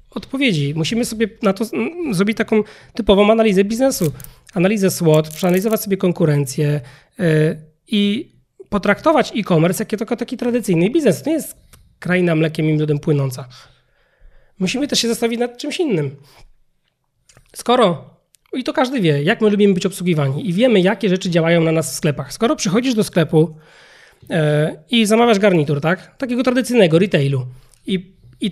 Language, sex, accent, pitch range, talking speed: Polish, male, native, 160-225 Hz, 145 wpm